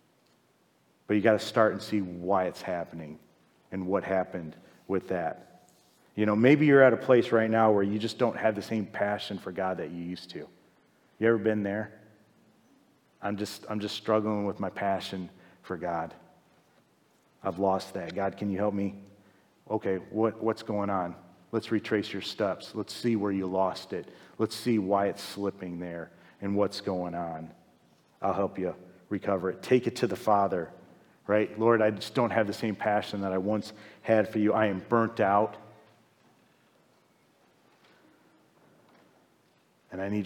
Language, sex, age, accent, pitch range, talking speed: English, male, 40-59, American, 95-115 Hz, 175 wpm